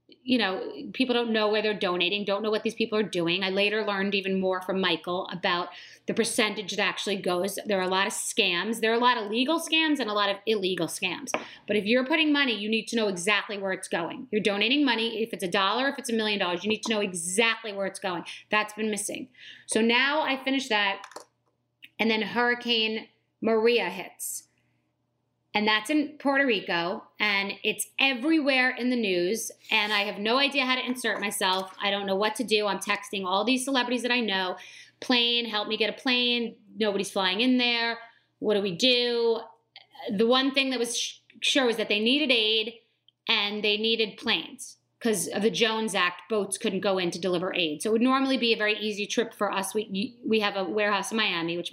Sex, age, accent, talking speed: female, 30-49, American, 215 wpm